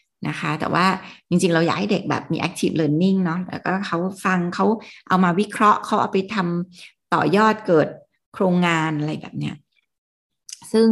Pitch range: 165-205 Hz